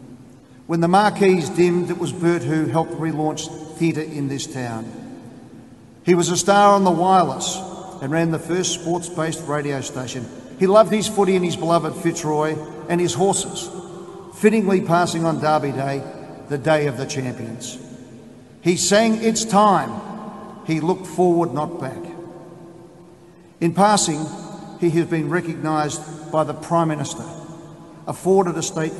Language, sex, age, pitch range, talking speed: English, male, 50-69, 140-175 Hz, 145 wpm